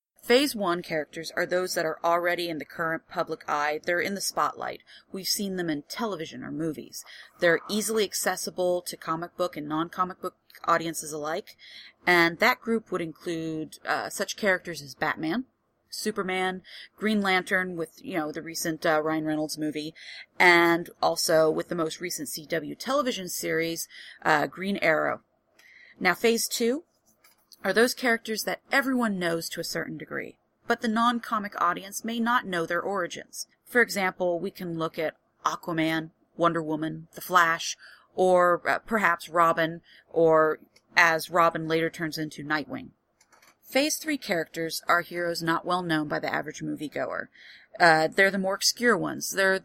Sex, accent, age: female, American, 30-49